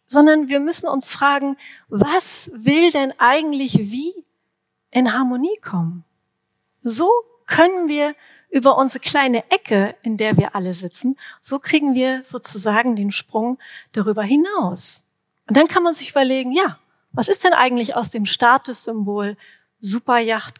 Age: 40-59